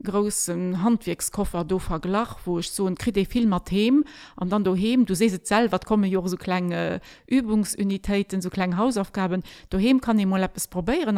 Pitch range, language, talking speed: 185-220 Hz, French, 170 wpm